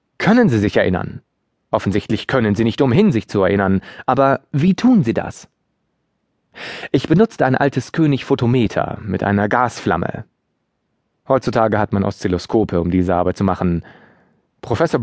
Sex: male